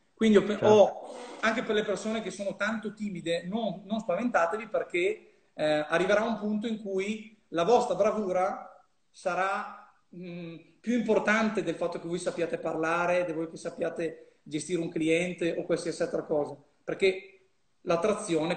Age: 40-59